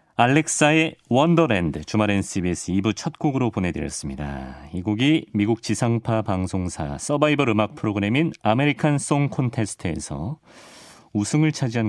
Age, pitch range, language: 40-59, 90-140 Hz, Korean